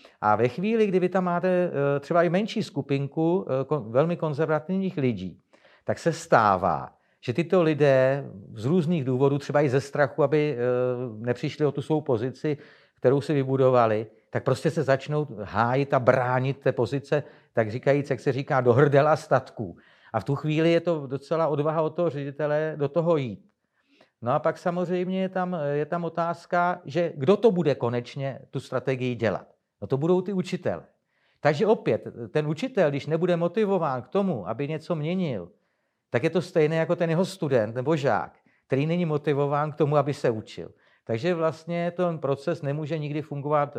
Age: 50-69